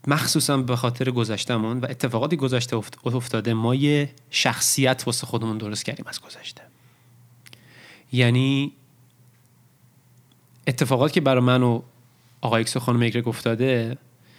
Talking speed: 115 wpm